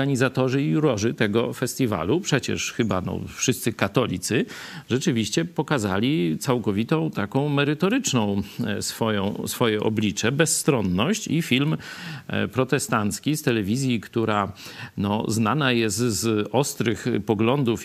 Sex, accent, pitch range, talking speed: male, native, 110-155 Hz, 90 wpm